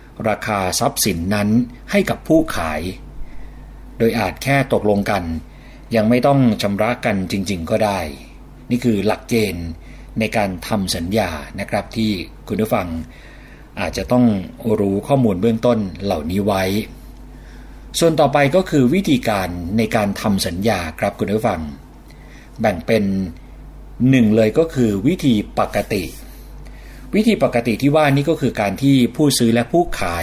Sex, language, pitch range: male, Thai, 95-130 Hz